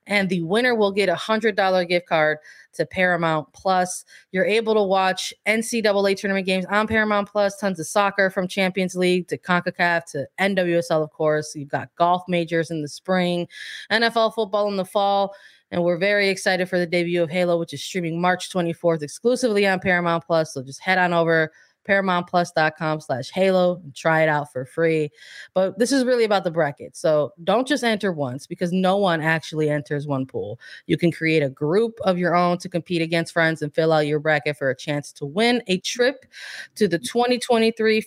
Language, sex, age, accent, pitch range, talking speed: English, female, 20-39, American, 165-200 Hz, 195 wpm